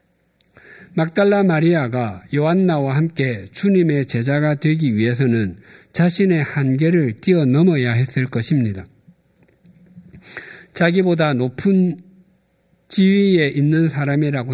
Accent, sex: native, male